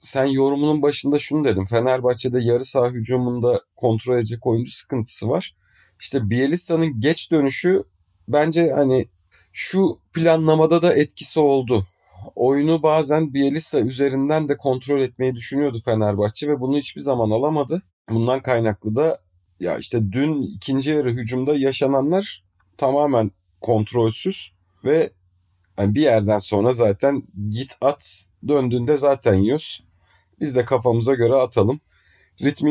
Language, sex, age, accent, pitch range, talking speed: Turkish, male, 40-59, native, 110-150 Hz, 125 wpm